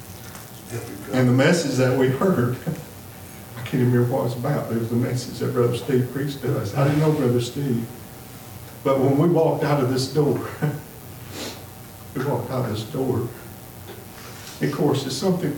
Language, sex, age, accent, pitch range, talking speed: English, male, 50-69, American, 110-130 Hz, 185 wpm